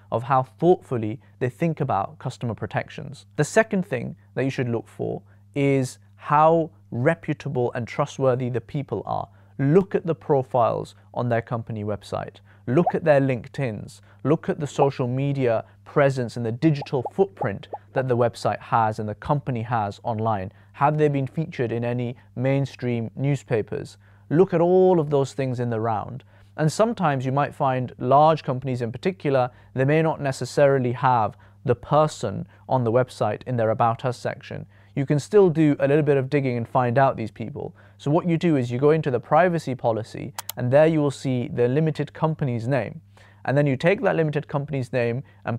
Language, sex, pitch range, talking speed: English, male, 115-145 Hz, 185 wpm